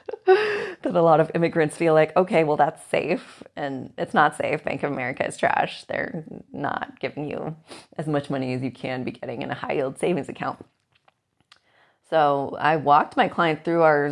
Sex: female